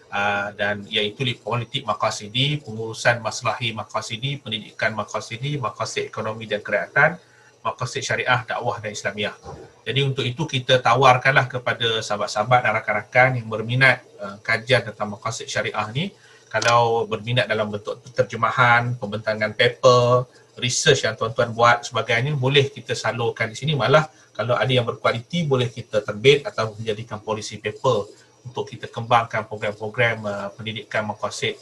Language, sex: Malay, male